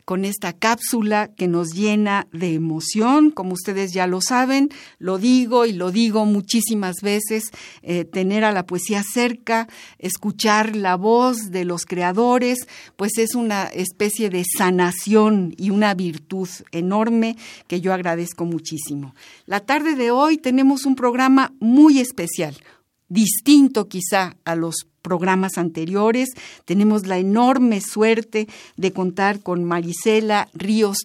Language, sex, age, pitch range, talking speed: Spanish, female, 50-69, 180-230 Hz, 135 wpm